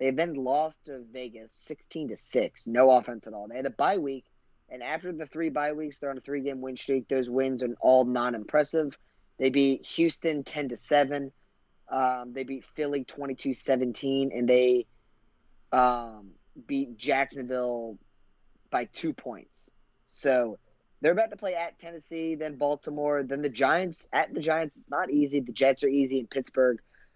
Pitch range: 125-145 Hz